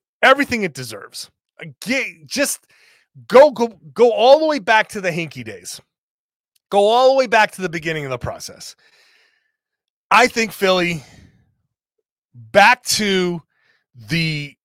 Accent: American